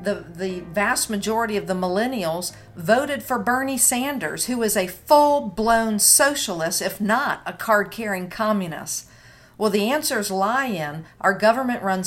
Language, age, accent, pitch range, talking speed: English, 50-69, American, 185-230 Hz, 140 wpm